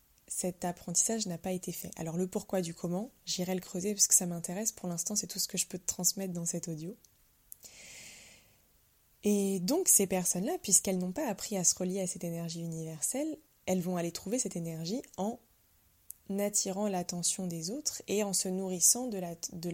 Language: French